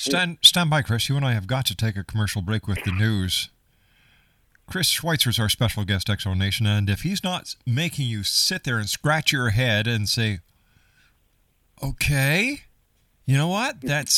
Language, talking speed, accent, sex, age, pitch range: English, 185 wpm, American, male, 50-69, 95-135 Hz